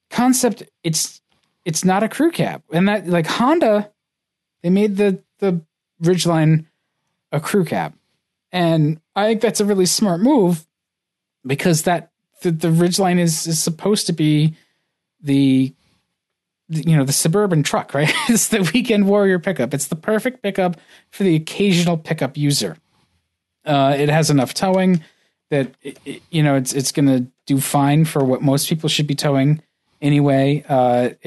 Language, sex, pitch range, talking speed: English, male, 135-175 Hz, 160 wpm